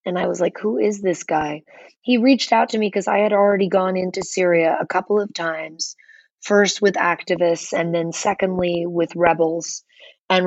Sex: female